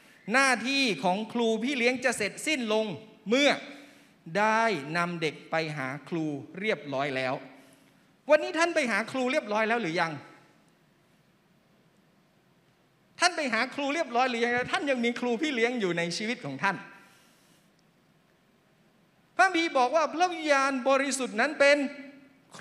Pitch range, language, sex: 190-265 Hz, Thai, male